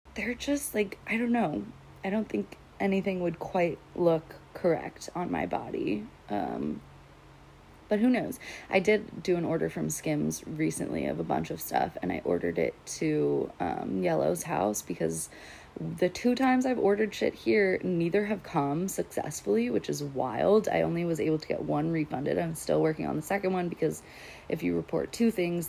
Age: 30-49